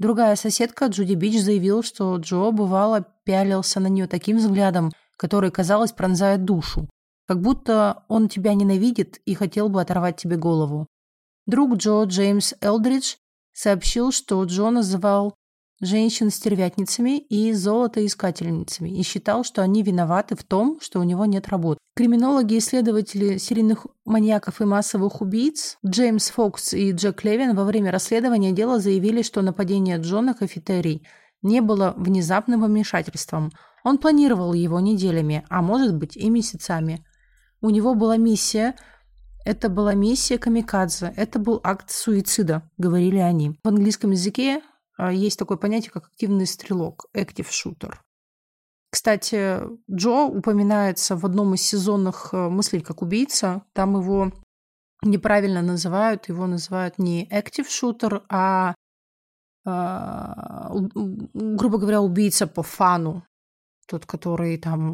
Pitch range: 185-220 Hz